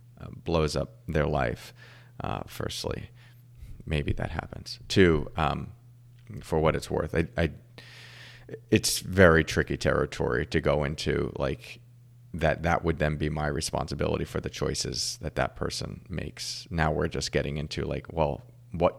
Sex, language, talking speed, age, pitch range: male, English, 150 wpm, 30-49, 75-115 Hz